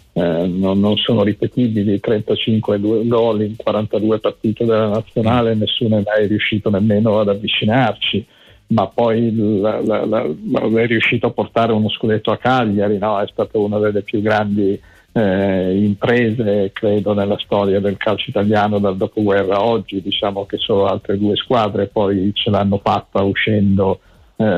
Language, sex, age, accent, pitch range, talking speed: Italian, male, 50-69, native, 100-115 Hz, 140 wpm